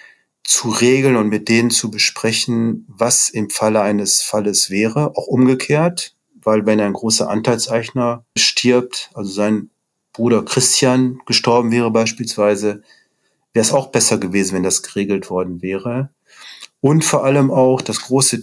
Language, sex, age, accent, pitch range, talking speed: German, male, 40-59, German, 110-125 Hz, 145 wpm